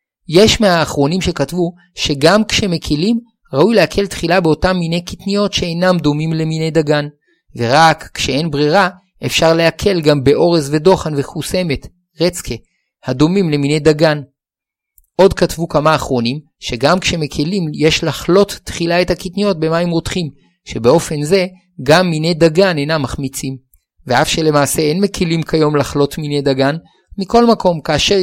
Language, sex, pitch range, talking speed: Hebrew, male, 145-185 Hz, 125 wpm